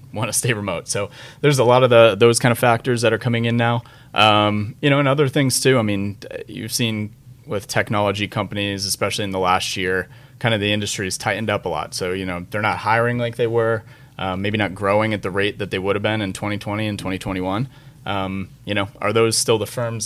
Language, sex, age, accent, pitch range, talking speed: English, male, 30-49, American, 95-125 Hz, 240 wpm